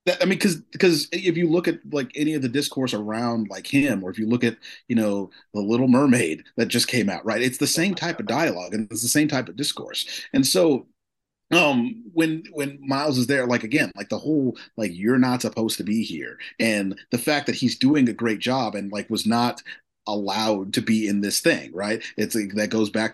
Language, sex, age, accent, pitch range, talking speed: English, male, 30-49, American, 105-150 Hz, 230 wpm